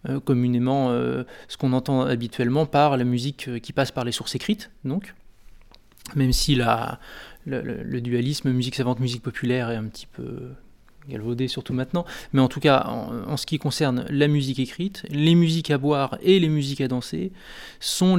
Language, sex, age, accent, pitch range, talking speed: French, male, 20-39, French, 130-160 Hz, 175 wpm